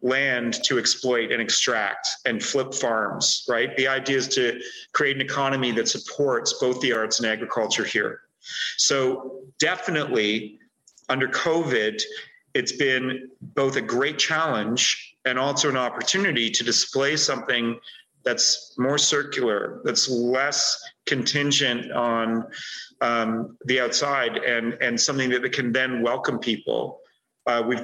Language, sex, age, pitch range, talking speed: English, male, 40-59, 120-145 Hz, 130 wpm